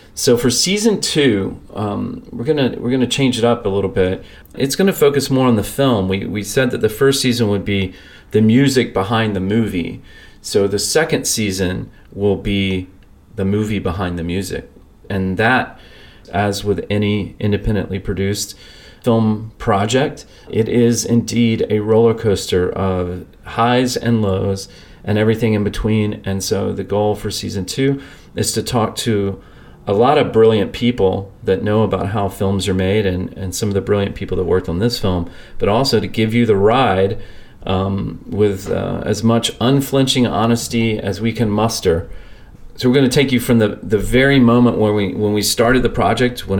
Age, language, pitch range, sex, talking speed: 40-59, English, 95-115 Hz, male, 185 wpm